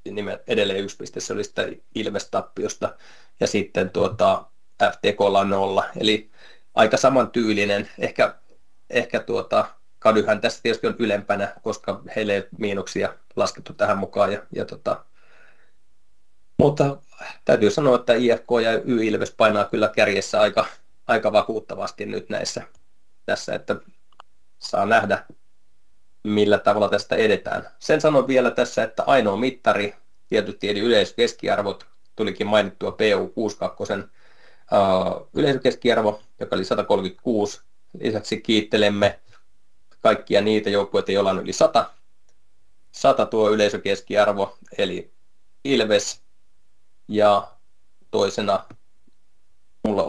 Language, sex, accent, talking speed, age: Finnish, male, native, 105 wpm, 30-49